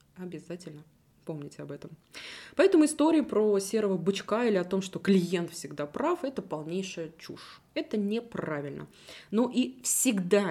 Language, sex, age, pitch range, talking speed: Russian, female, 20-39, 165-225 Hz, 135 wpm